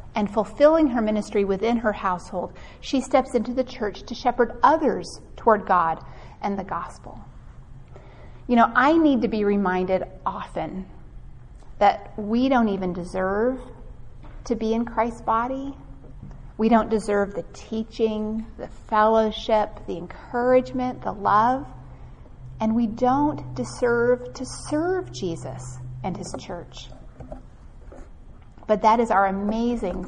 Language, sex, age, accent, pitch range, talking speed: English, female, 40-59, American, 190-240 Hz, 130 wpm